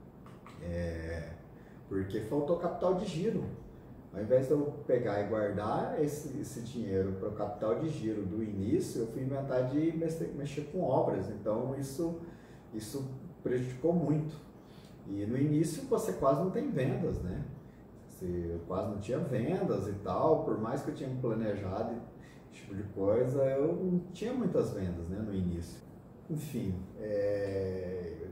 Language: Portuguese